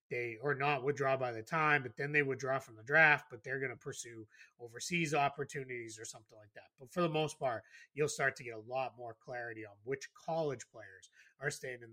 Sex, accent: male, American